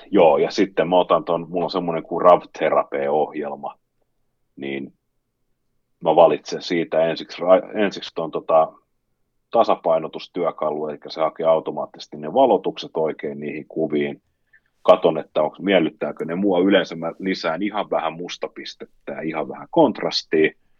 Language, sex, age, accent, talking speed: Finnish, male, 30-49, native, 130 wpm